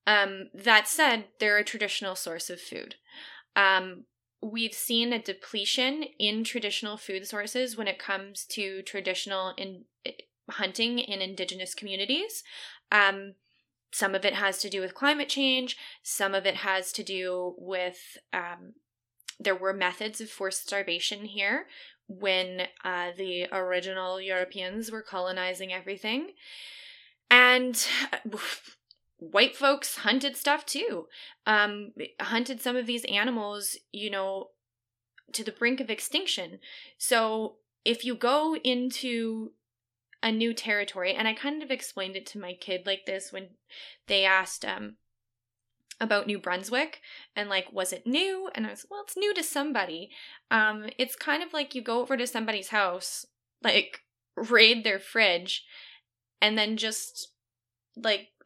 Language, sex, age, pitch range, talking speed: English, female, 20-39, 190-245 Hz, 140 wpm